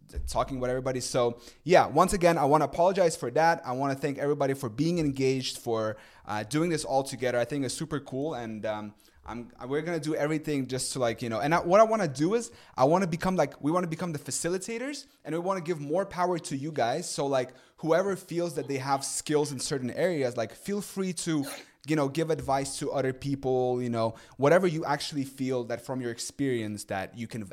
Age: 20-39